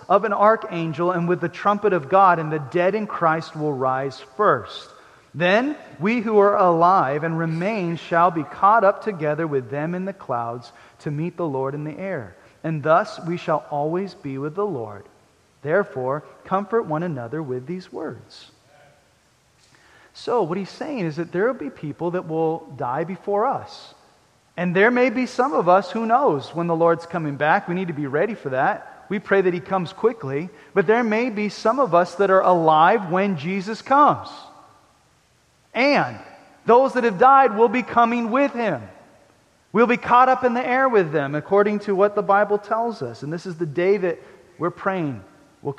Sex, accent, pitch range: male, American, 150-205 Hz